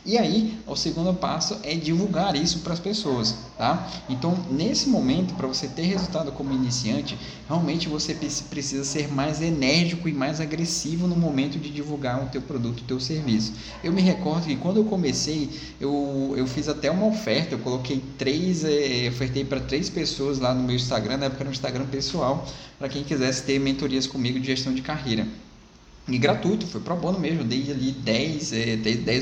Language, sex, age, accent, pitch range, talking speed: Portuguese, male, 20-39, Brazilian, 130-165 Hz, 185 wpm